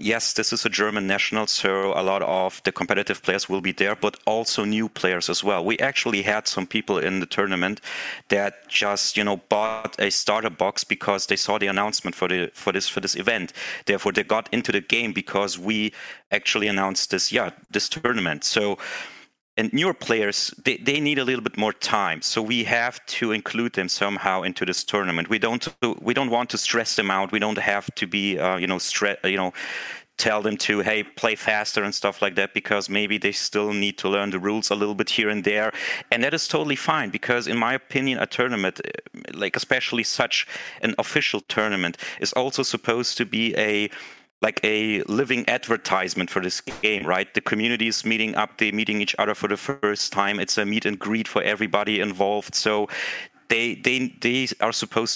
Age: 30-49